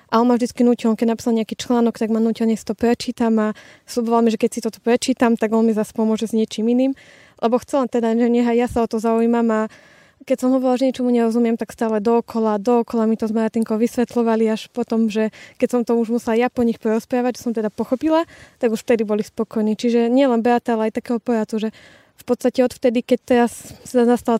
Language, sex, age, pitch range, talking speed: Slovak, female, 20-39, 225-245 Hz, 225 wpm